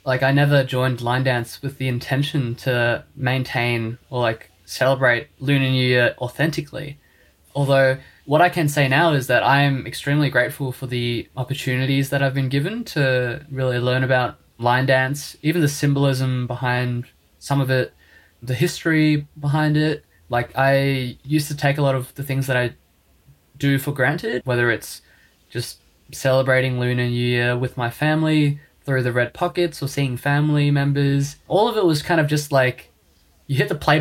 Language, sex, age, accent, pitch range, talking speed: English, male, 20-39, Australian, 125-145 Hz, 175 wpm